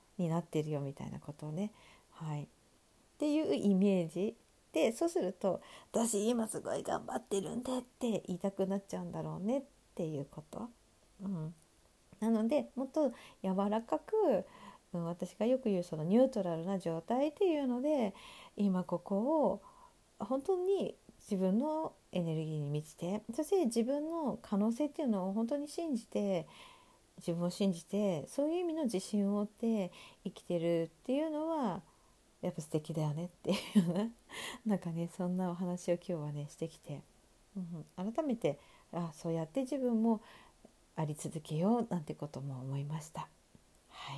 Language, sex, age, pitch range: Japanese, female, 50-69, 170-235 Hz